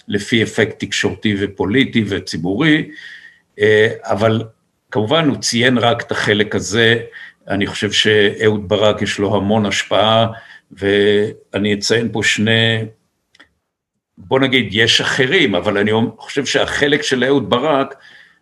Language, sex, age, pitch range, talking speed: Hebrew, male, 60-79, 100-125 Hz, 115 wpm